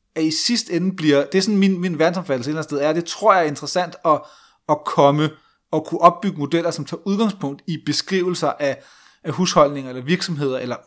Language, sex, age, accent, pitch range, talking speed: Danish, male, 30-49, native, 130-165 Hz, 205 wpm